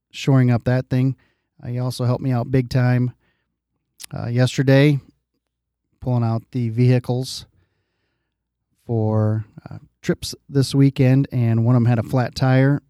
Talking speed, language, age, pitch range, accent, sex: 145 wpm, English, 40-59, 115-135 Hz, American, male